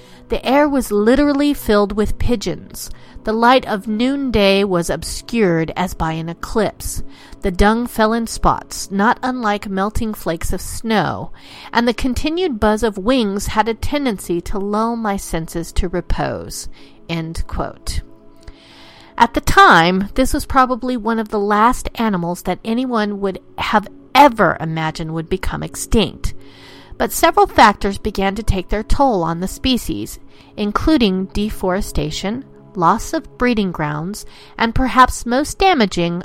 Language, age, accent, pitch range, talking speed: English, 50-69, American, 180-235 Hz, 140 wpm